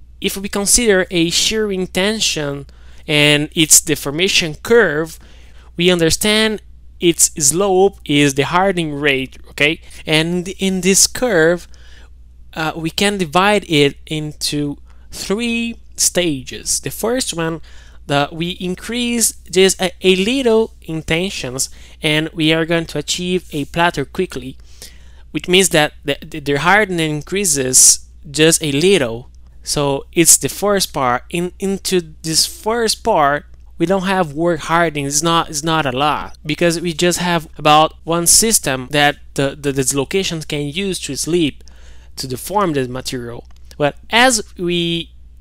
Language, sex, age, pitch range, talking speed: English, male, 20-39, 140-185 Hz, 140 wpm